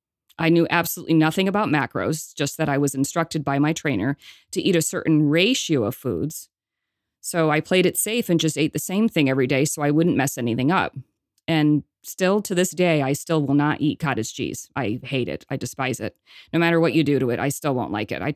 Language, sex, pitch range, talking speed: English, female, 140-170 Hz, 230 wpm